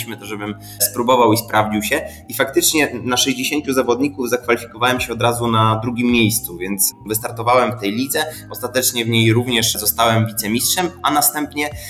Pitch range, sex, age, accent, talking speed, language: 110-125 Hz, male, 20-39, native, 155 wpm, Polish